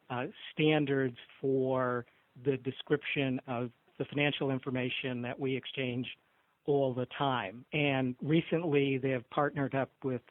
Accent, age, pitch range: American, 50-69, 130-145 Hz